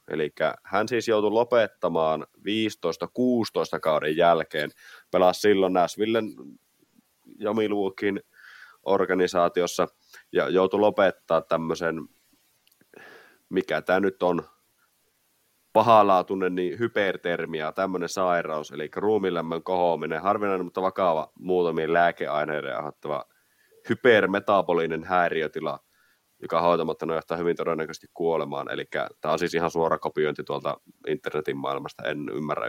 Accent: native